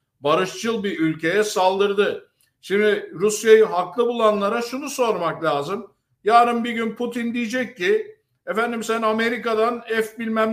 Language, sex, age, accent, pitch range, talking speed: Turkish, male, 60-79, native, 180-225 Hz, 125 wpm